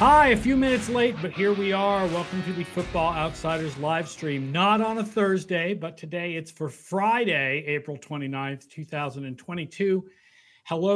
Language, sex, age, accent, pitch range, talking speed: English, male, 50-69, American, 145-185 Hz, 160 wpm